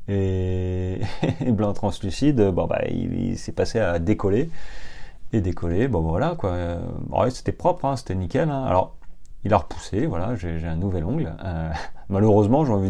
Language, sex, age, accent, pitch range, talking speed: French, male, 30-49, French, 85-105 Hz, 170 wpm